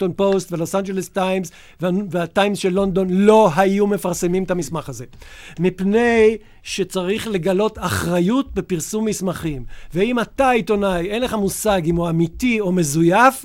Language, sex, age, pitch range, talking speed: Hebrew, male, 50-69, 175-215 Hz, 135 wpm